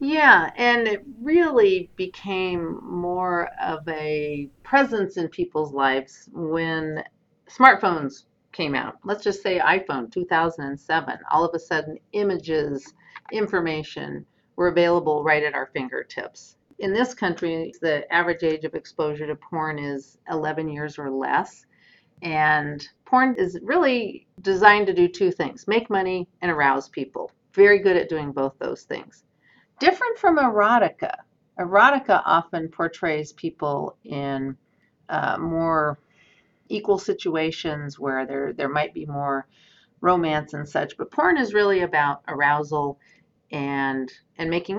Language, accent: English, American